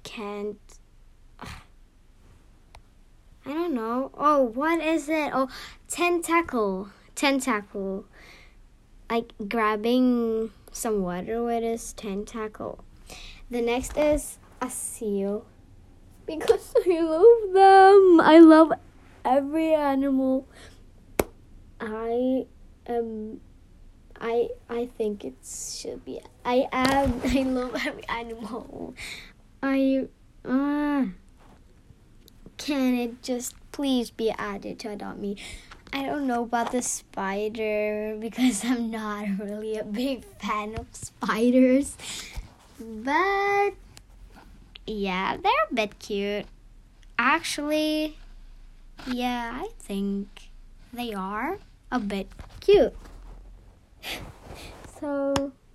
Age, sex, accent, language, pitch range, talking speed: 10-29, female, American, English, 215-285 Hz, 95 wpm